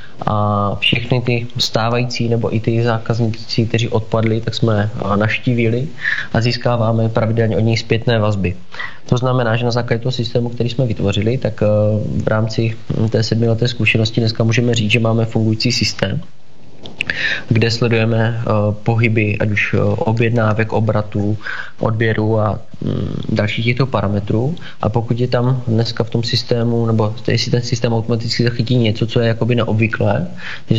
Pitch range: 110-120 Hz